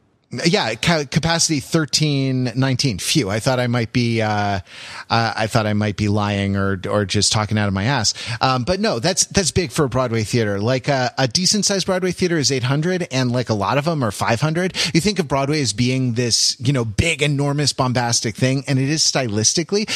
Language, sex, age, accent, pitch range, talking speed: English, male, 30-49, American, 115-150 Hz, 215 wpm